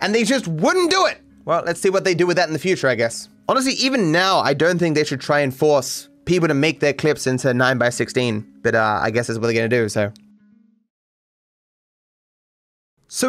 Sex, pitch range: male, 130-185 Hz